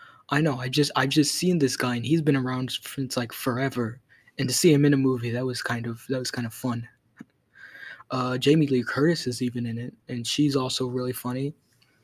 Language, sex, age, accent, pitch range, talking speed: English, male, 20-39, American, 120-145 Hz, 225 wpm